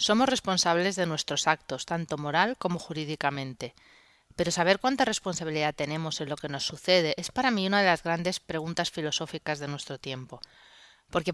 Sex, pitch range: female, 155-195 Hz